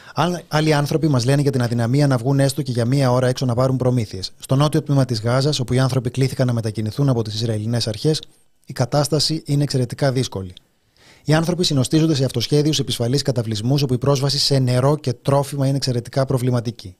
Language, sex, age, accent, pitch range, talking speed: Greek, male, 30-49, native, 120-145 Hz, 190 wpm